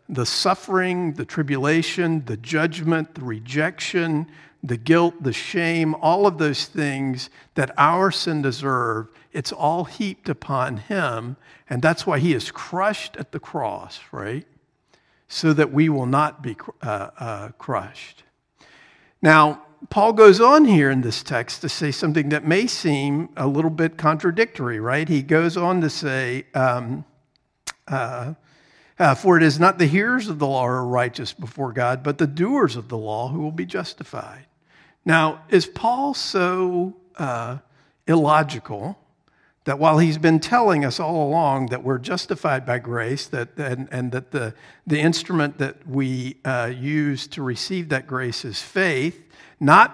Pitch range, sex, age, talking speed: 130-165 Hz, male, 50-69, 160 wpm